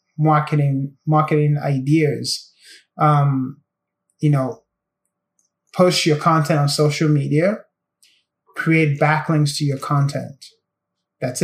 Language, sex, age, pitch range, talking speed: English, male, 20-39, 150-175 Hz, 95 wpm